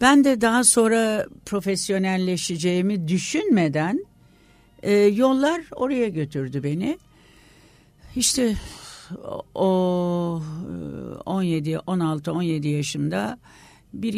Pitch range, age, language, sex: 155-205 Hz, 60-79, Turkish, female